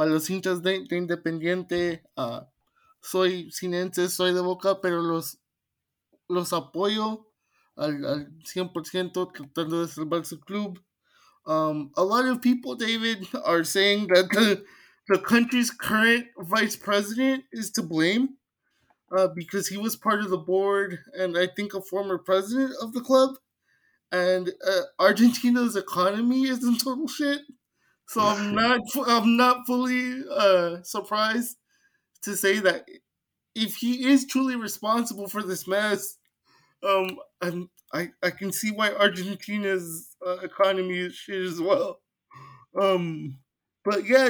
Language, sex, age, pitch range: English, male, 20-39, 180-230 Hz